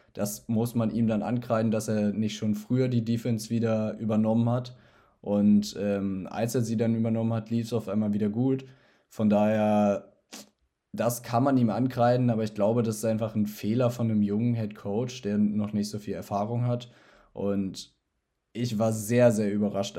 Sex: male